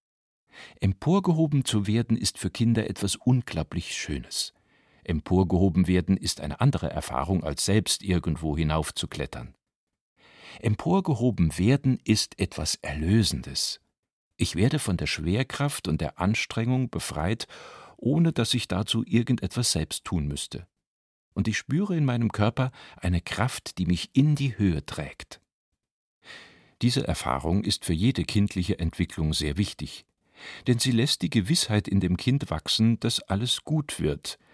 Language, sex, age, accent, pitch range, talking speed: German, male, 50-69, German, 85-115 Hz, 135 wpm